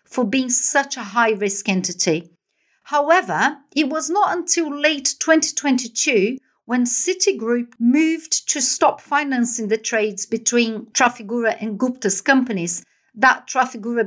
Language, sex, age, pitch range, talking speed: English, female, 50-69, 215-285 Hz, 120 wpm